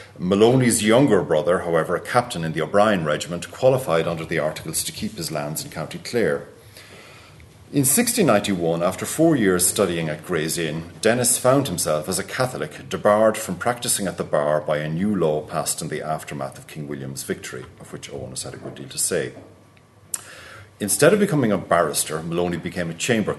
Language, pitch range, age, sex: English, 80-110 Hz, 40-59, male